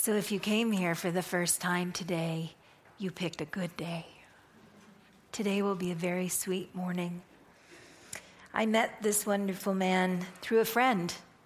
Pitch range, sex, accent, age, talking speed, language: 185-240 Hz, female, American, 50-69, 155 wpm, English